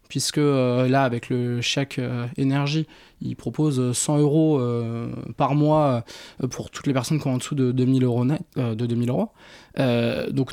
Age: 20-39